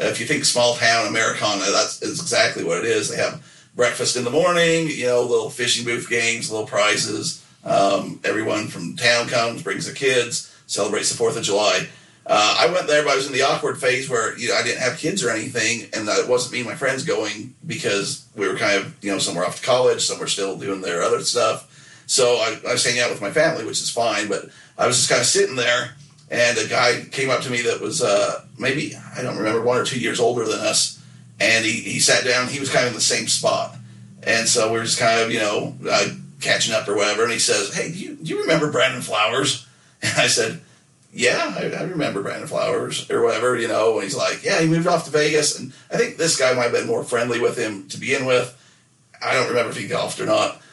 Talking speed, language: 245 wpm, English